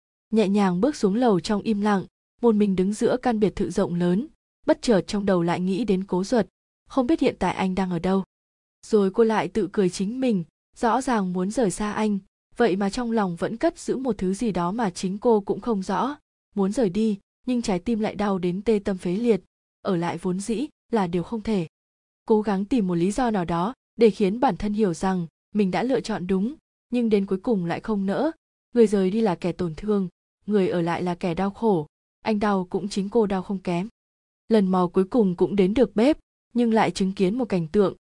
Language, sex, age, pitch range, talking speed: Vietnamese, female, 20-39, 185-230 Hz, 235 wpm